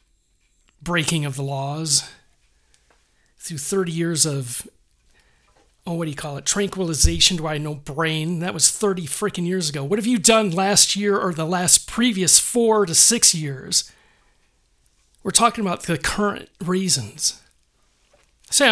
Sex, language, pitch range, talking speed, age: male, English, 150-205 Hz, 145 wpm, 40-59